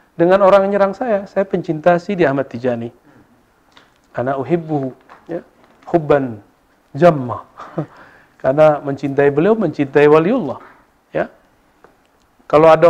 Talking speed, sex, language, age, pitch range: 100 wpm, male, Indonesian, 40-59, 130-180 Hz